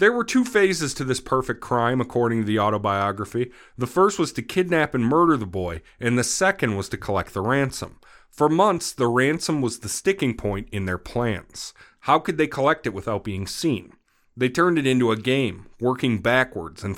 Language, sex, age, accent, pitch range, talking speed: English, male, 40-59, American, 105-135 Hz, 200 wpm